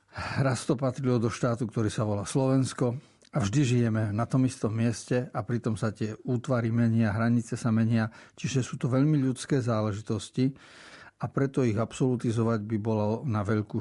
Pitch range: 115-140 Hz